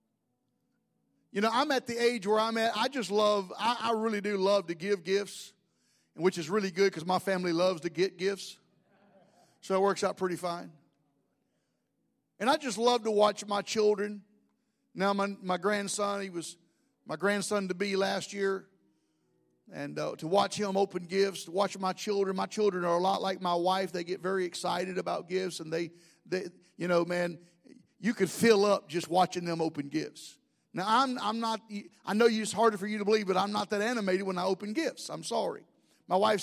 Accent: American